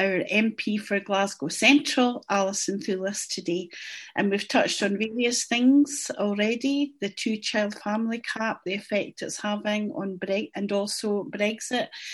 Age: 40-59